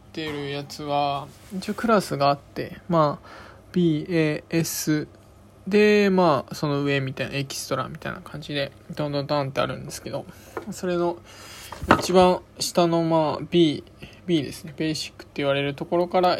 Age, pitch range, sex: 20-39, 105-175 Hz, male